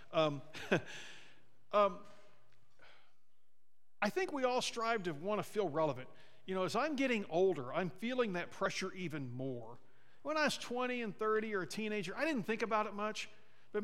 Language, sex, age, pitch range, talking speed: English, male, 50-69, 155-225 Hz, 175 wpm